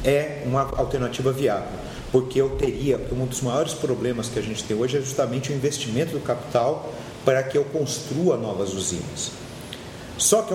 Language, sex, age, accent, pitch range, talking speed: Portuguese, male, 40-59, Brazilian, 120-165 Hz, 170 wpm